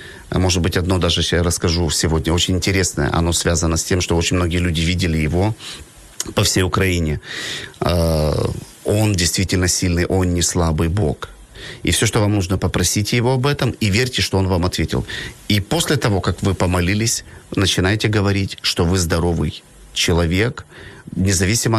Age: 30-49